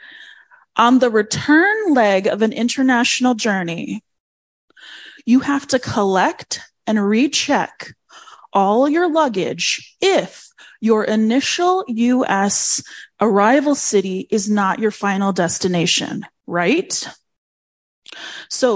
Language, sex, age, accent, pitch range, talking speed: English, female, 20-39, American, 200-275 Hz, 95 wpm